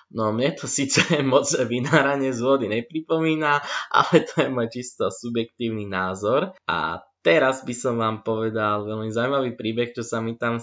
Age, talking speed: 20-39, 165 wpm